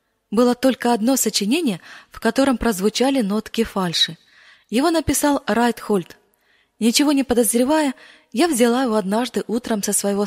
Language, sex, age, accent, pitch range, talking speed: Russian, female, 20-39, native, 210-260 Hz, 135 wpm